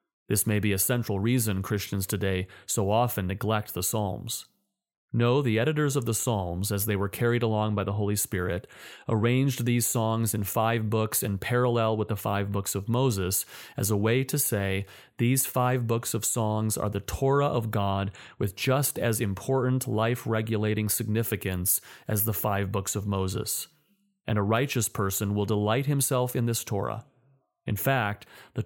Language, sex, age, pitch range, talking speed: English, male, 30-49, 100-125 Hz, 170 wpm